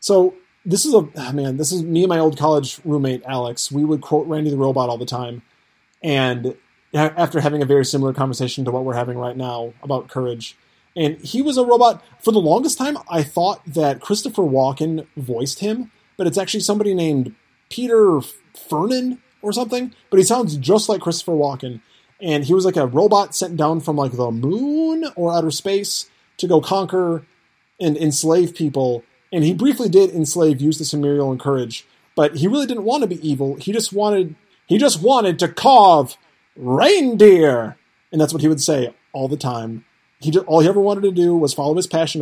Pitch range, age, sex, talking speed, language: 130-180 Hz, 30-49, male, 200 wpm, English